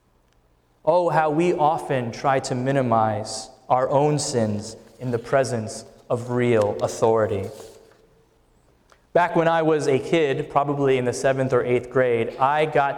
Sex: male